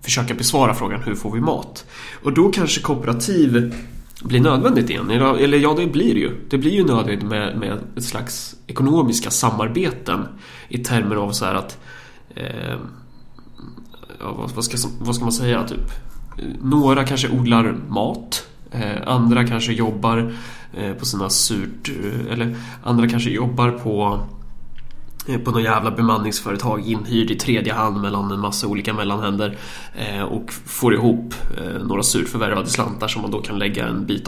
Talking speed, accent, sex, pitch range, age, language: 145 wpm, native, male, 110-125 Hz, 20-39, Swedish